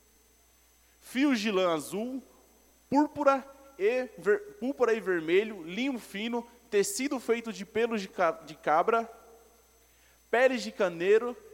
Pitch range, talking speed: 165-235 Hz, 110 wpm